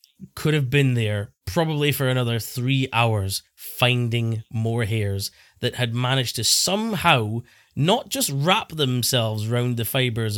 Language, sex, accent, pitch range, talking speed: English, male, British, 115-165 Hz, 140 wpm